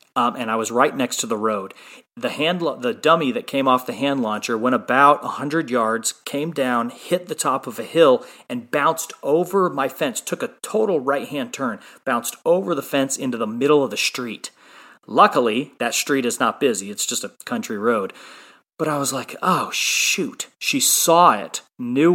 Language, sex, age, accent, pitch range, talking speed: English, male, 30-49, American, 120-160 Hz, 200 wpm